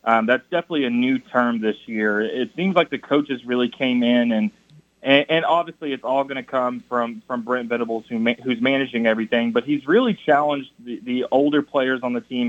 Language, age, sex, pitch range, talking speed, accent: English, 20-39, male, 120-150 Hz, 205 wpm, American